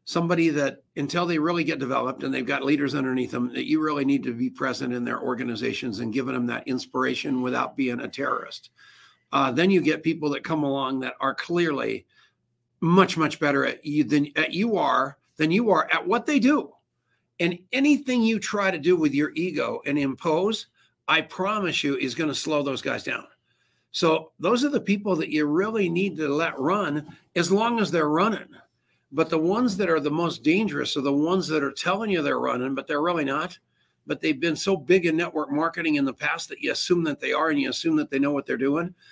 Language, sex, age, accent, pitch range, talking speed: English, male, 60-79, American, 145-185 Hz, 220 wpm